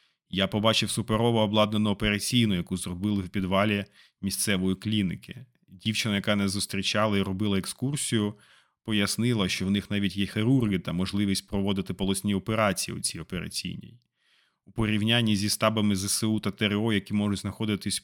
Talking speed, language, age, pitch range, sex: 145 wpm, Ukrainian, 30-49, 95-110 Hz, male